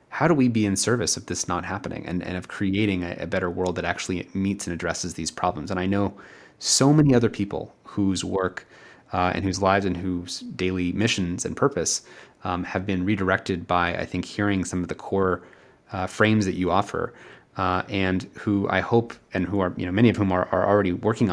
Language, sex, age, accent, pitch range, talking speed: English, male, 30-49, American, 90-100 Hz, 220 wpm